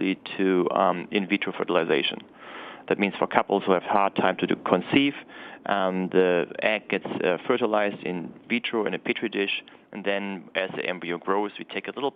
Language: English